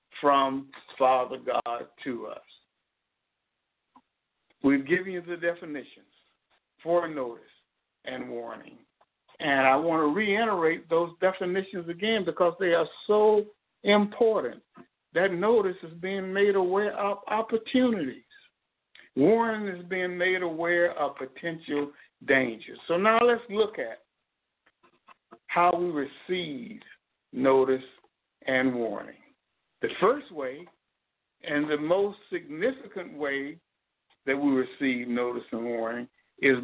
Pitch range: 140-200 Hz